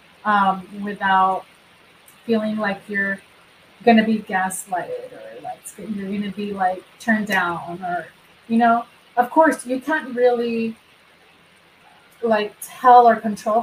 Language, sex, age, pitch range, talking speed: English, female, 30-49, 205-235 Hz, 130 wpm